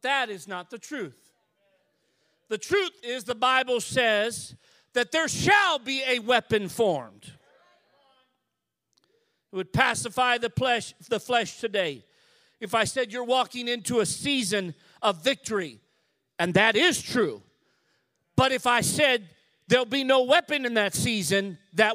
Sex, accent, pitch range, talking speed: male, American, 200-265 Hz, 140 wpm